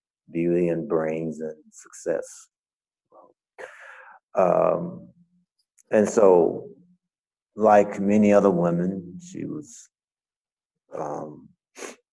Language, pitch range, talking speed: English, 85-120 Hz, 75 wpm